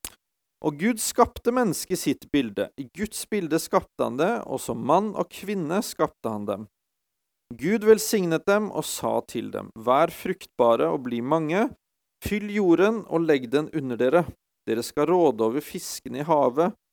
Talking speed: 165 wpm